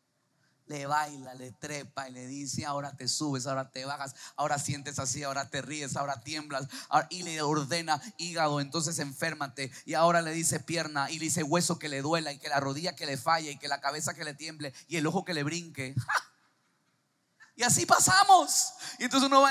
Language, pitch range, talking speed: Spanish, 145-235 Hz, 210 wpm